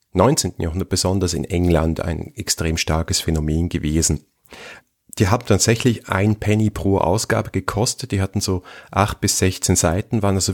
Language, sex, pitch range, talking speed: German, male, 90-105 Hz, 155 wpm